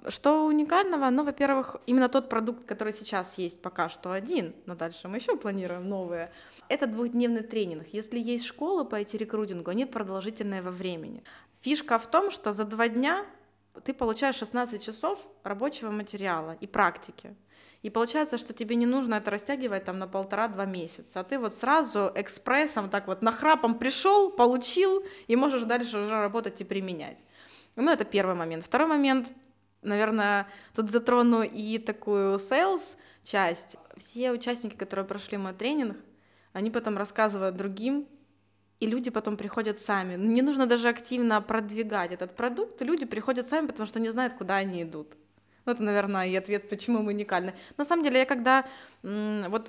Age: 20-39